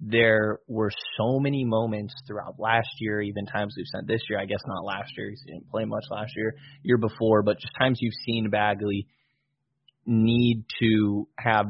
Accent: American